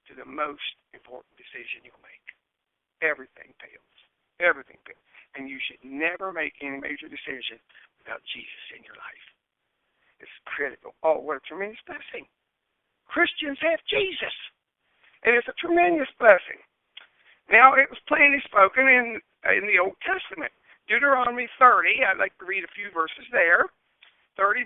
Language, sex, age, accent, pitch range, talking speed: English, male, 60-79, American, 185-285 Hz, 145 wpm